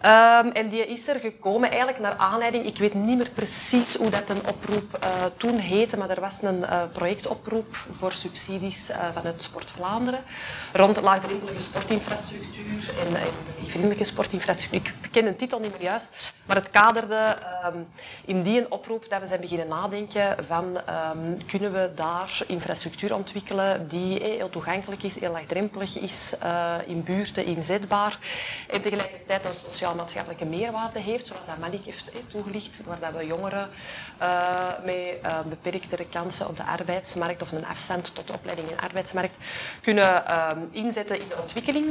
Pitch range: 175-210 Hz